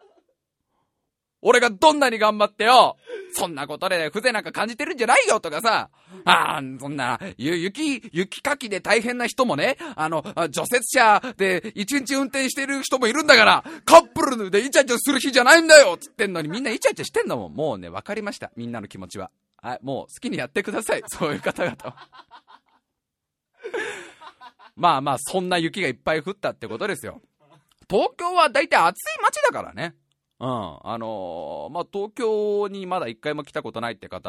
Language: Japanese